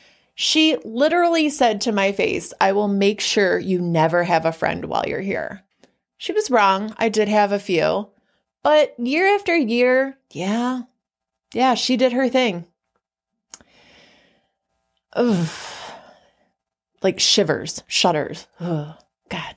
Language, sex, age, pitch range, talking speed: English, female, 30-49, 175-255 Hz, 130 wpm